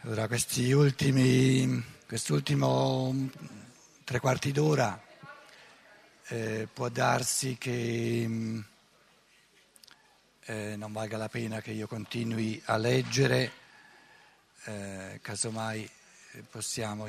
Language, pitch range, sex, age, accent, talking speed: Italian, 110-140 Hz, male, 60-79, native, 85 wpm